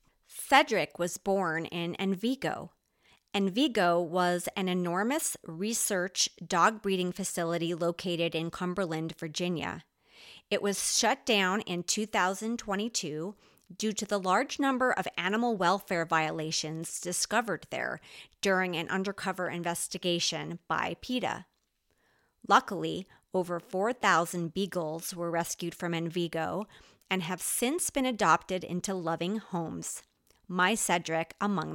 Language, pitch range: English, 170-220 Hz